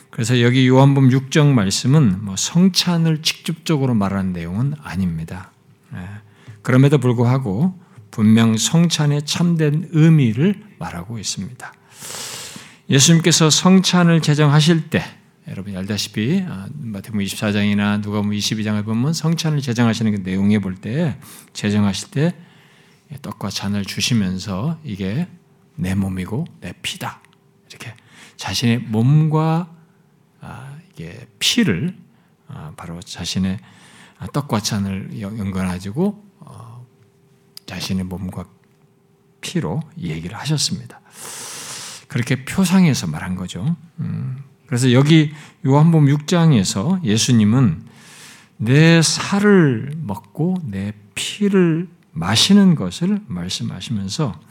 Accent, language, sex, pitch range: native, Korean, male, 105-165 Hz